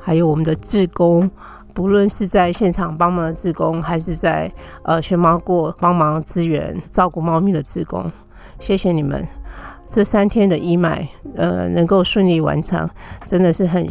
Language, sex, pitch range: Chinese, female, 160-195 Hz